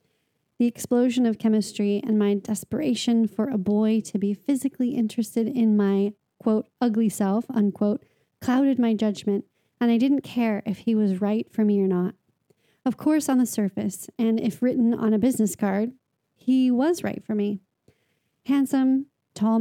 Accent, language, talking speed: American, English, 165 wpm